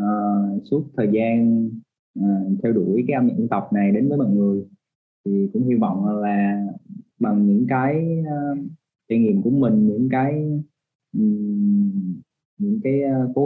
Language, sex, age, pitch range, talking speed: Vietnamese, male, 20-39, 105-160 Hz, 165 wpm